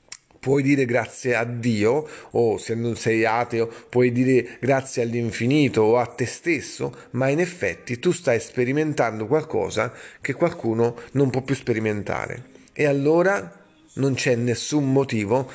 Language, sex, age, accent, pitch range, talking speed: Italian, male, 40-59, native, 120-160 Hz, 145 wpm